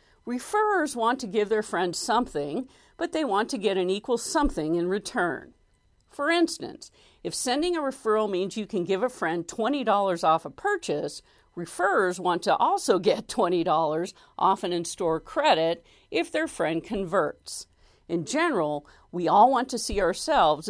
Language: English